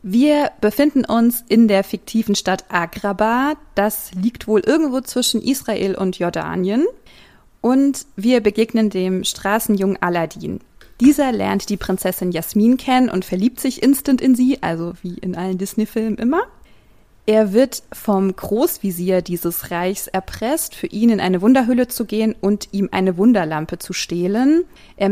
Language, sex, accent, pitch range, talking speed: German, female, German, 185-240 Hz, 145 wpm